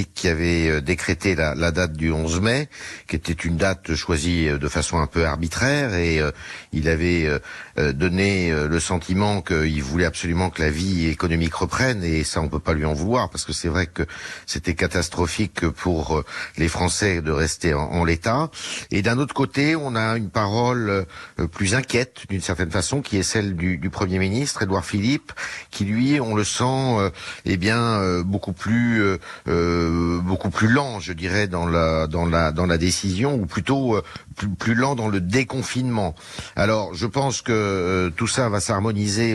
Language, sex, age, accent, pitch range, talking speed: French, male, 50-69, French, 85-105 Hz, 195 wpm